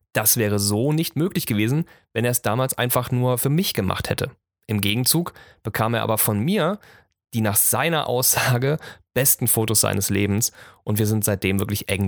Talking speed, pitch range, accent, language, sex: 185 wpm, 105-135 Hz, German, German, male